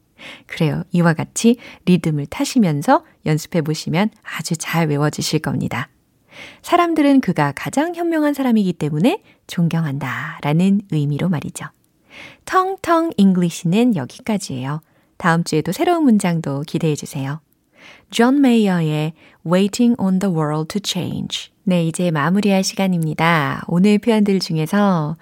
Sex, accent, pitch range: female, native, 155-230 Hz